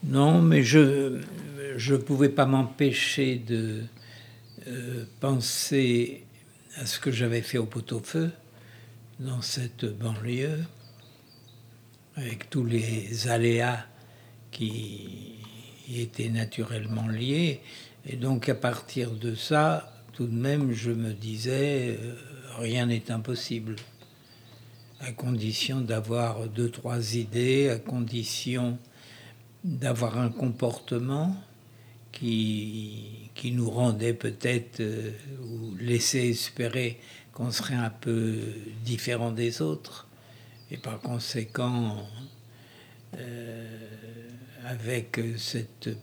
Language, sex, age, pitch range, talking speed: French, male, 60-79, 115-130 Hz, 100 wpm